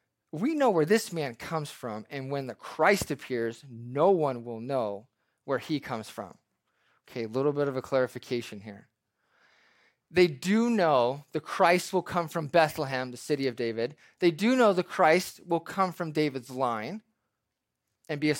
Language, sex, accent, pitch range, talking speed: English, male, American, 150-200 Hz, 175 wpm